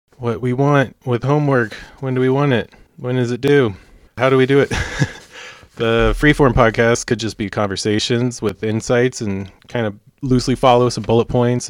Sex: male